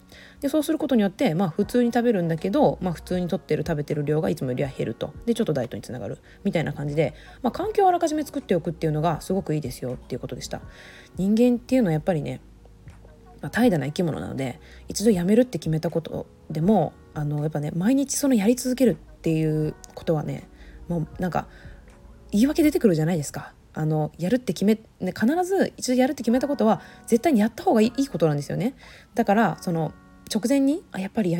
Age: 20-39